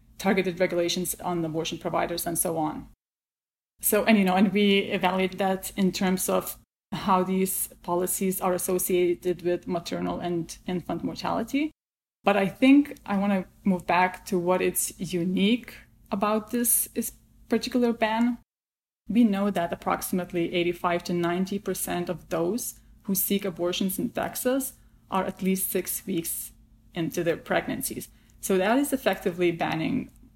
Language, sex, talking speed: English, female, 145 wpm